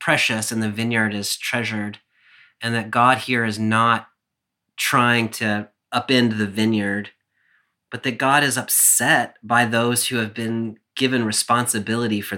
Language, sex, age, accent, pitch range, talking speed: English, male, 30-49, American, 105-125 Hz, 145 wpm